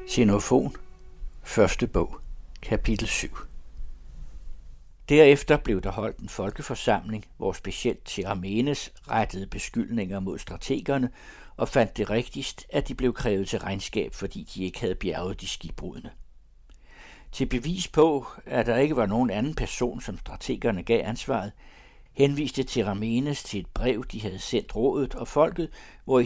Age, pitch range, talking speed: 60-79, 95-135 Hz, 140 wpm